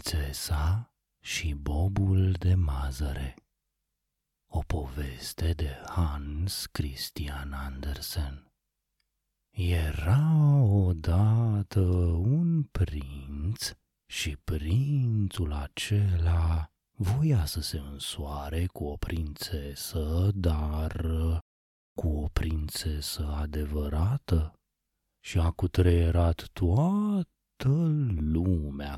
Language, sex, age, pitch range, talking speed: Romanian, male, 30-49, 75-100 Hz, 70 wpm